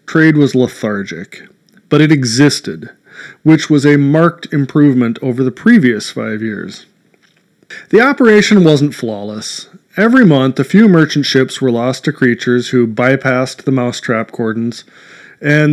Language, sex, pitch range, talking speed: English, male, 125-165 Hz, 135 wpm